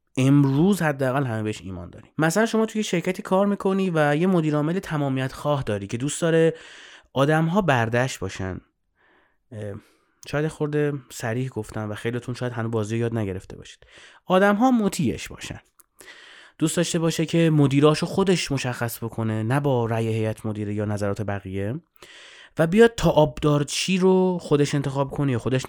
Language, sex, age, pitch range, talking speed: Persian, male, 30-49, 115-155 Hz, 150 wpm